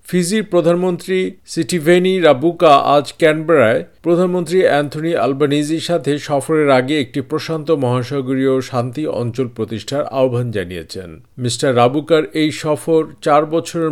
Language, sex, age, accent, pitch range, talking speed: Bengali, male, 50-69, native, 120-155 Hz, 105 wpm